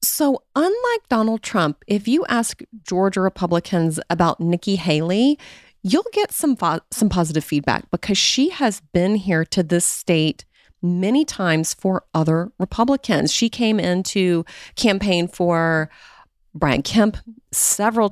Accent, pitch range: American, 165-215 Hz